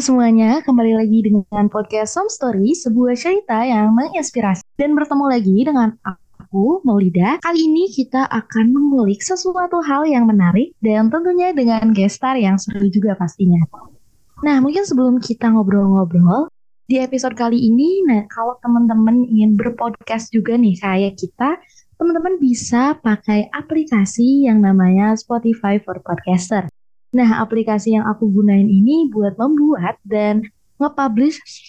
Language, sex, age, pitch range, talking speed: Indonesian, female, 20-39, 205-270 Hz, 135 wpm